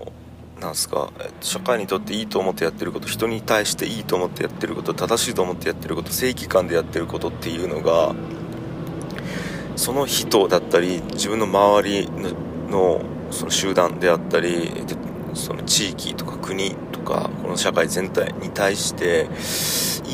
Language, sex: Japanese, male